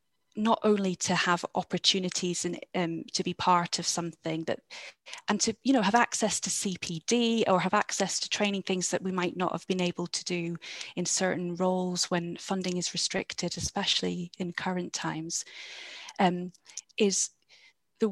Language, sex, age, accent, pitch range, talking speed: English, female, 30-49, British, 175-205 Hz, 165 wpm